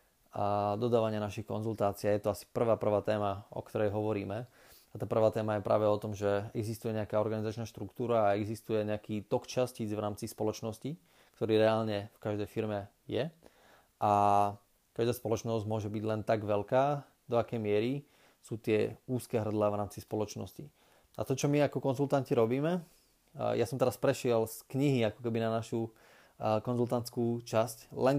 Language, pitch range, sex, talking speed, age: Slovak, 110-120 Hz, male, 165 wpm, 20-39